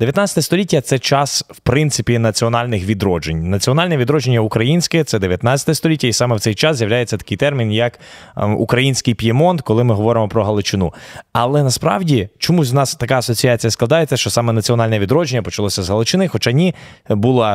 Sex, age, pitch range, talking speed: male, 20-39, 110-140 Hz, 165 wpm